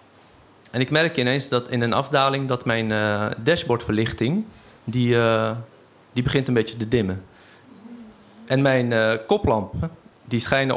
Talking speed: 135 wpm